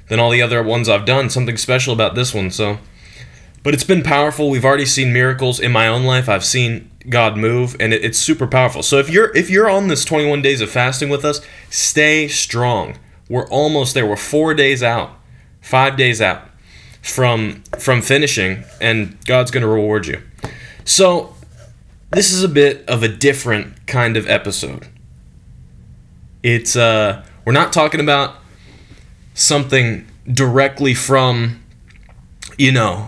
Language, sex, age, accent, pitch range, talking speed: English, male, 20-39, American, 115-140 Hz, 160 wpm